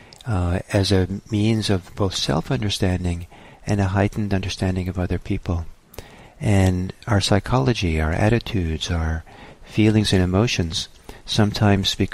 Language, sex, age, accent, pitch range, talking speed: English, male, 50-69, American, 90-105 Hz, 120 wpm